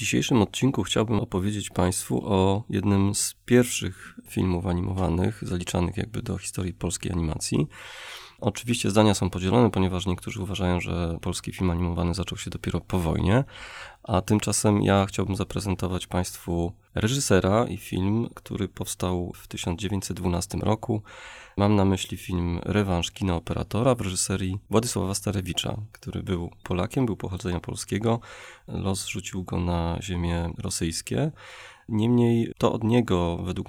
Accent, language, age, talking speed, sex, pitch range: native, Polish, 30-49, 135 wpm, male, 90-110 Hz